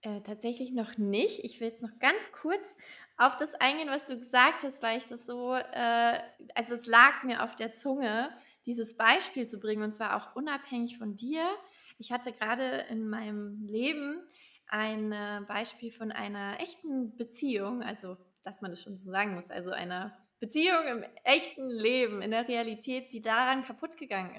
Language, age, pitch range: English, 20-39, 205-255 Hz